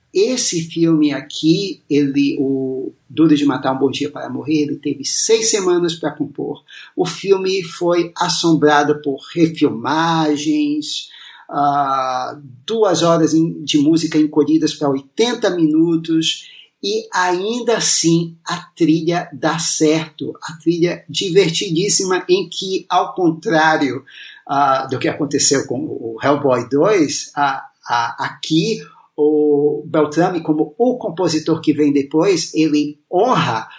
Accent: Brazilian